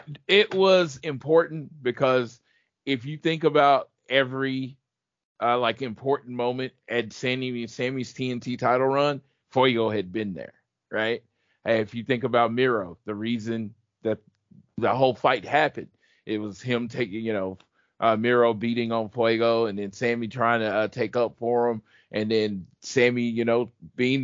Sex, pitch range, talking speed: male, 115-140 Hz, 155 wpm